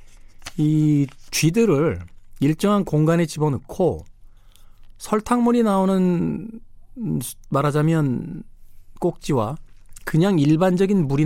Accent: native